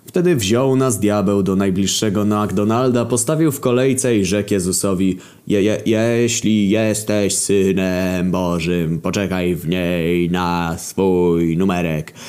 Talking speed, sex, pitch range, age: 120 wpm, male, 90-110 Hz, 20-39